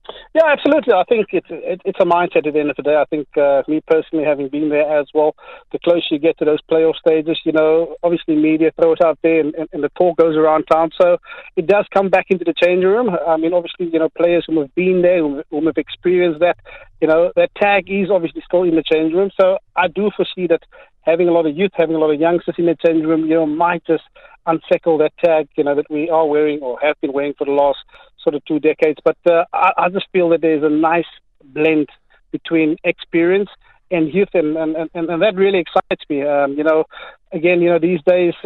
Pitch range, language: 155-180 Hz, English